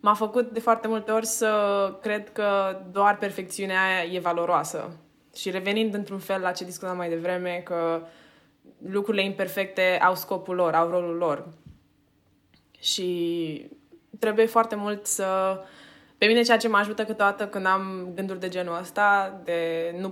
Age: 20-39